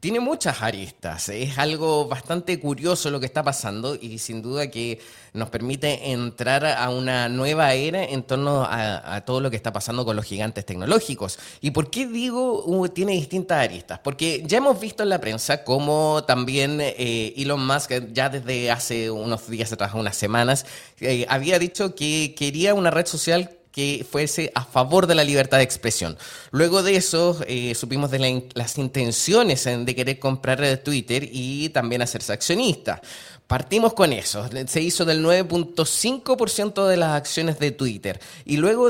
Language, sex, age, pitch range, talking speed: Spanish, male, 20-39, 120-165 Hz, 175 wpm